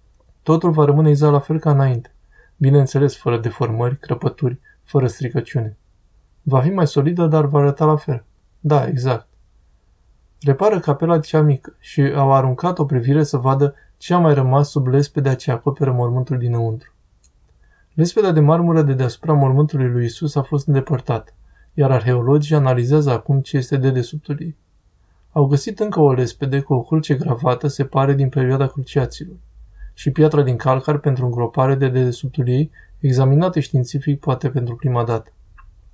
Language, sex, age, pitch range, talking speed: Romanian, male, 20-39, 125-150 Hz, 160 wpm